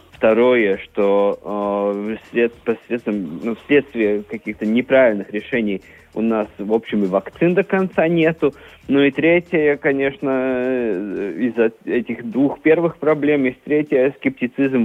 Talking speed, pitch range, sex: 120 wpm, 110-130 Hz, male